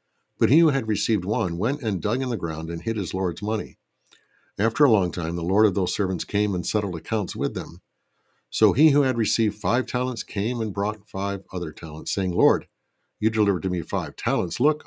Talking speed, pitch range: 220 wpm, 90-115 Hz